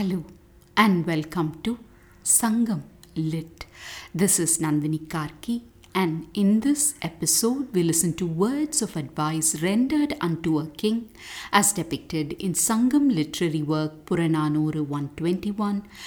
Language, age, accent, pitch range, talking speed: English, 60-79, Indian, 160-225 Hz, 120 wpm